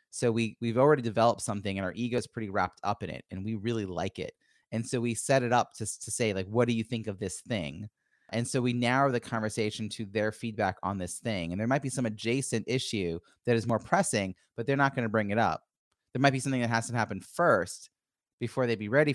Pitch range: 105-130 Hz